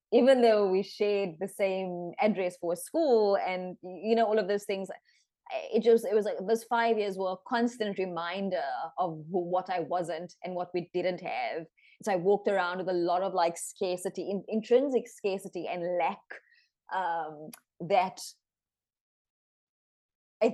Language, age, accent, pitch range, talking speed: English, 20-39, Indian, 175-215 Hz, 160 wpm